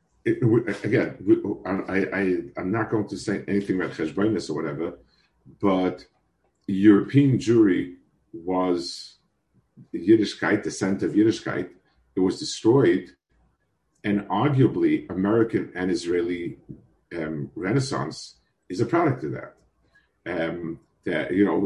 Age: 50-69